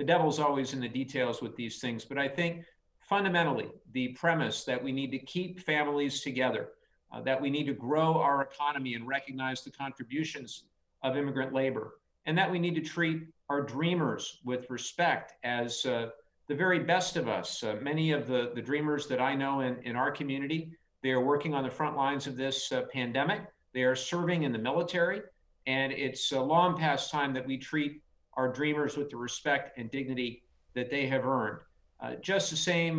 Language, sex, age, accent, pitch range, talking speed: English, male, 50-69, American, 130-155 Hz, 195 wpm